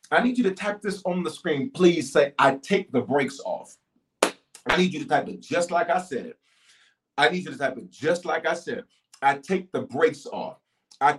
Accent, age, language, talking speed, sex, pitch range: American, 40-59, English, 225 wpm, male, 130-205 Hz